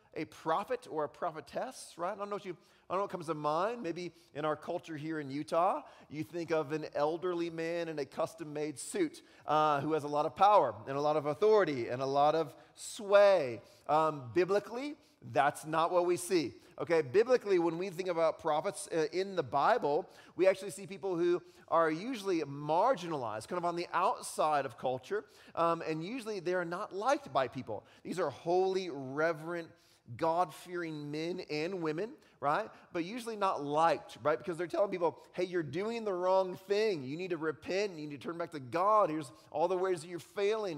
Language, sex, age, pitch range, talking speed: English, male, 30-49, 150-190 Hz, 200 wpm